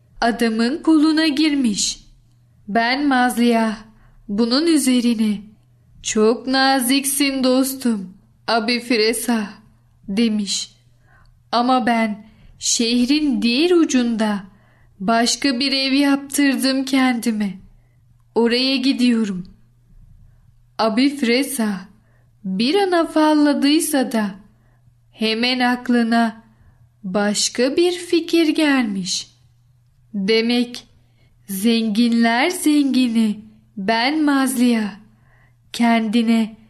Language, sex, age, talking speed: Turkish, female, 10-29, 65 wpm